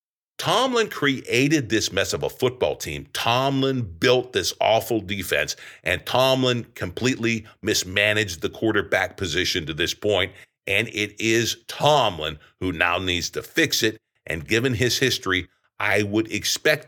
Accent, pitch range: American, 95-135 Hz